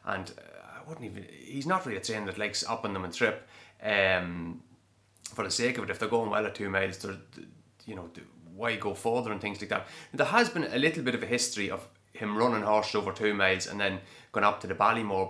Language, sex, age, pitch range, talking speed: English, male, 30-49, 95-115 Hz, 245 wpm